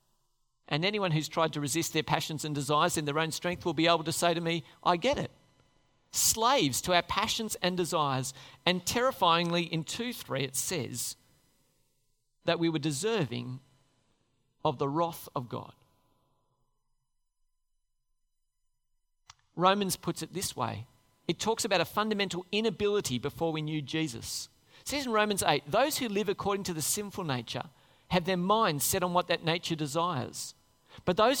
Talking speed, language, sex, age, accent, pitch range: 160 wpm, English, male, 40-59, Australian, 135-200 Hz